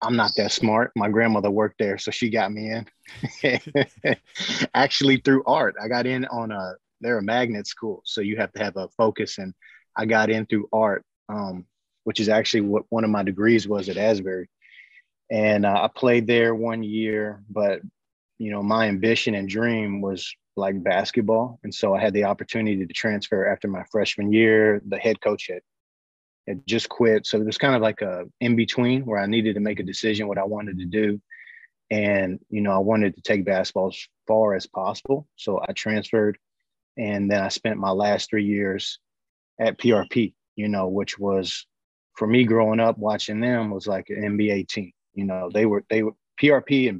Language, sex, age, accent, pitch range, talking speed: English, male, 20-39, American, 100-110 Hz, 195 wpm